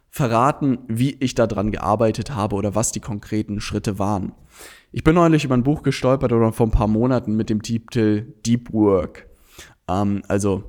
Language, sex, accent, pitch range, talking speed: German, male, German, 105-130 Hz, 180 wpm